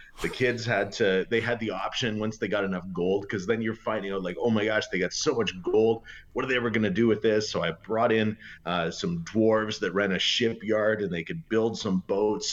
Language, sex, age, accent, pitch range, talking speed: English, male, 30-49, American, 95-120 Hz, 250 wpm